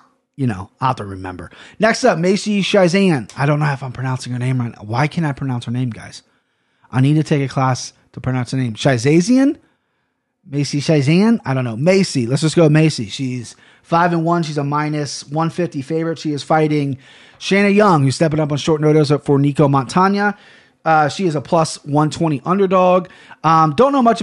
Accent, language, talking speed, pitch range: American, English, 215 wpm, 135-175 Hz